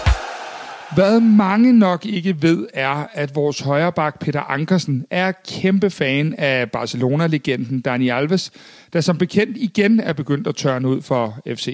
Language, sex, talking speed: Danish, male, 150 wpm